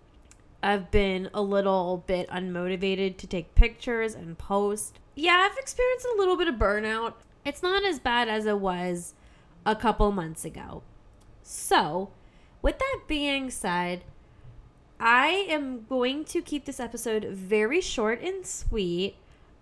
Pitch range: 185-235 Hz